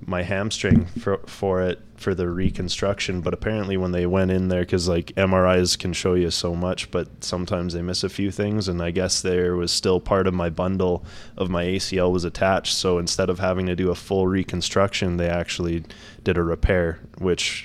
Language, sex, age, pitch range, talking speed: English, male, 20-39, 85-95 Hz, 205 wpm